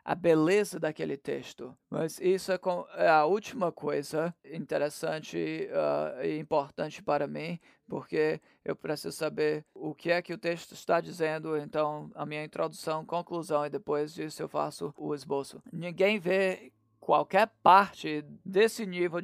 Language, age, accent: Portuguese, 20-39, Brazilian